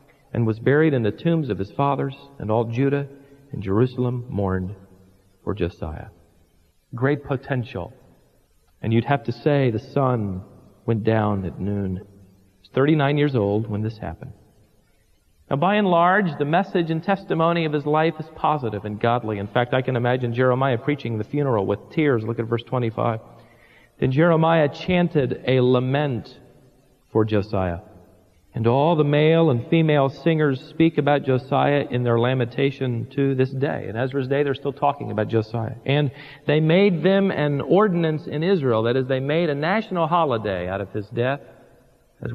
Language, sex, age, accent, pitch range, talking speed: English, male, 40-59, American, 110-145 Hz, 170 wpm